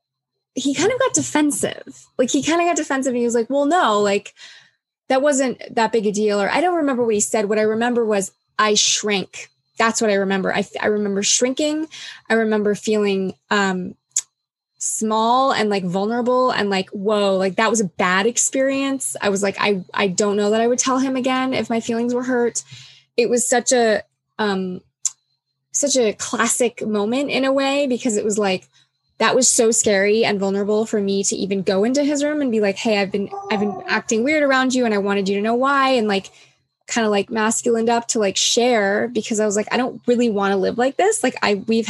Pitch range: 200-255 Hz